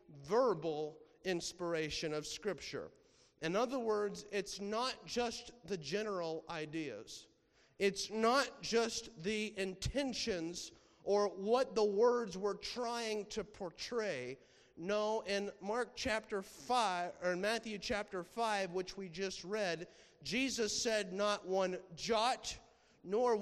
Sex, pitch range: male, 180-215 Hz